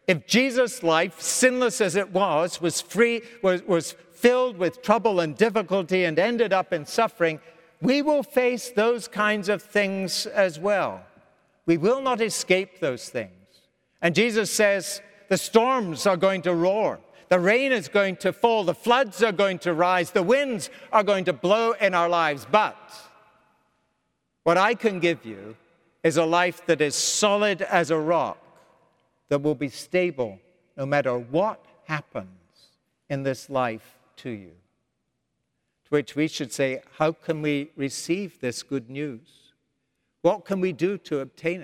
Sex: male